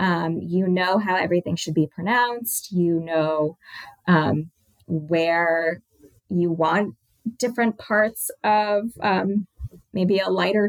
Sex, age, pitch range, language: female, 20-39, 165-210 Hz, English